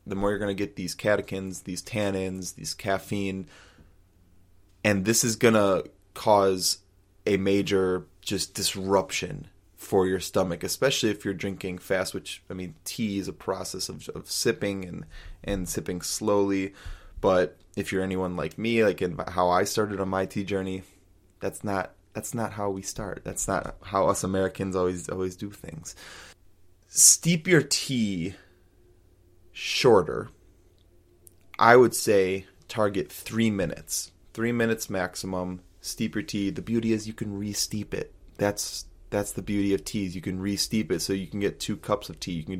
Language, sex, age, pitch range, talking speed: English, male, 20-39, 90-100 Hz, 170 wpm